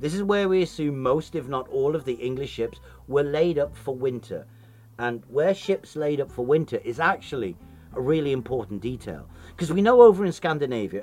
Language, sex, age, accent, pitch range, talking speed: English, male, 50-69, British, 110-155 Hz, 200 wpm